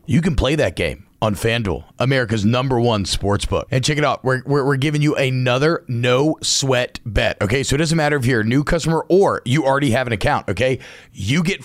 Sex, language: male, English